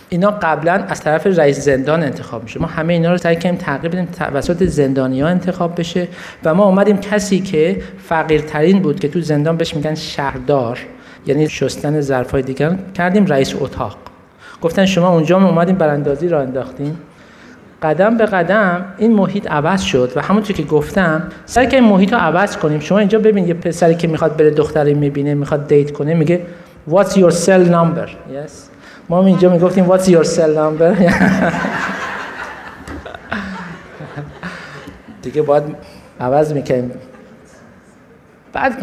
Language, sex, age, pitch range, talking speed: Persian, male, 50-69, 150-190 Hz, 145 wpm